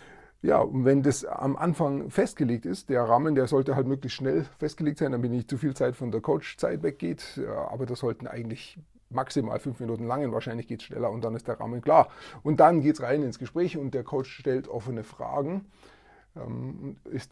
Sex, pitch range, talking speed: male, 120-145 Hz, 210 wpm